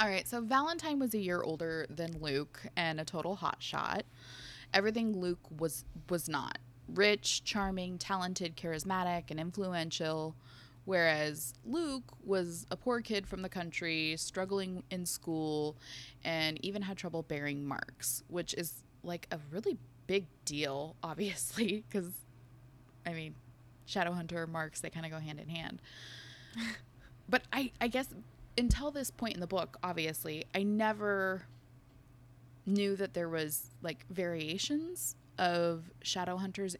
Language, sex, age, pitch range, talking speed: English, female, 20-39, 135-190 Hz, 140 wpm